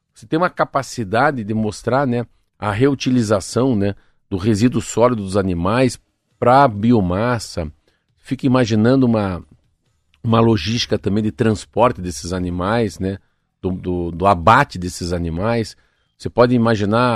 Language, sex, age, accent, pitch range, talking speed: Portuguese, male, 50-69, Brazilian, 100-130 Hz, 130 wpm